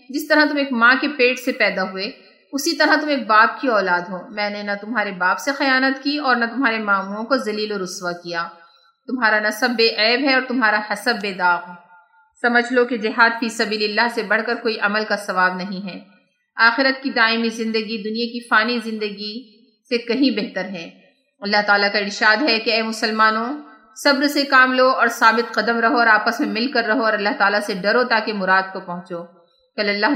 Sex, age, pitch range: female, 30-49, 200-245 Hz